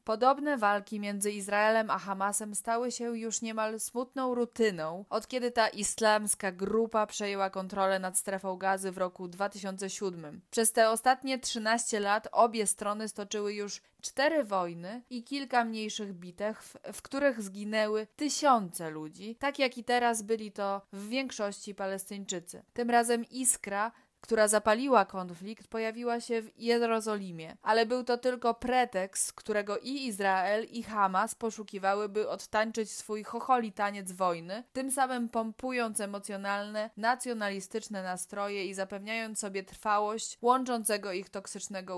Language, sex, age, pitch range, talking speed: Polish, female, 20-39, 195-230 Hz, 135 wpm